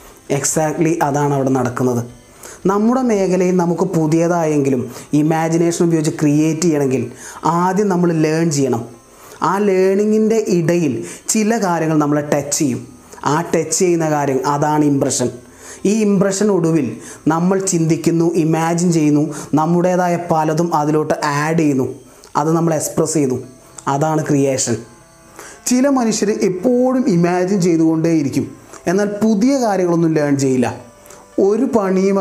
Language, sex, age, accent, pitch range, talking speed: Malayalam, male, 30-49, native, 150-195 Hz, 110 wpm